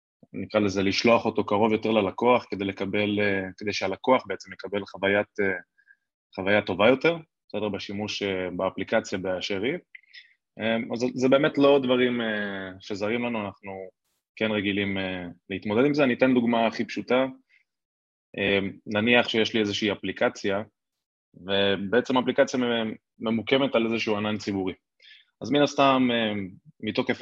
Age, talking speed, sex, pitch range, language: 20-39, 125 wpm, male, 100-125 Hz, Hebrew